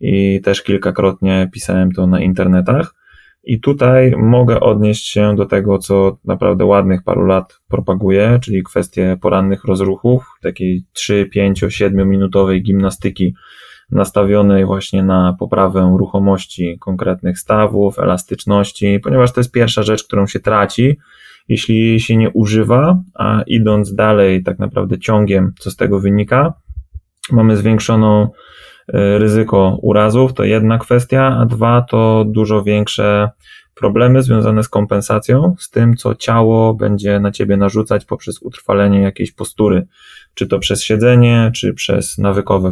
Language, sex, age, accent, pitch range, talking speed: Polish, male, 20-39, native, 95-115 Hz, 135 wpm